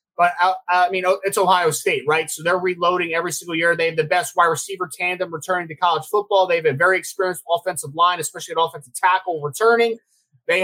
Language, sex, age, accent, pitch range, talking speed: English, male, 20-39, American, 165-190 Hz, 215 wpm